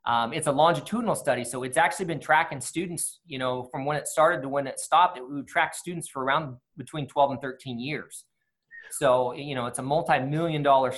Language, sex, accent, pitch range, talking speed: English, male, American, 130-160 Hz, 215 wpm